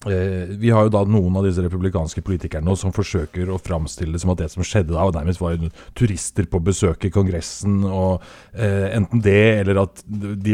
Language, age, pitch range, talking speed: English, 30-49, 95-115 Hz, 205 wpm